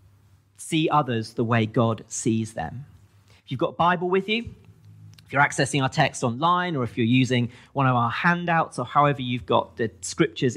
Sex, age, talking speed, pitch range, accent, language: male, 40-59, 195 wpm, 110-155 Hz, British, English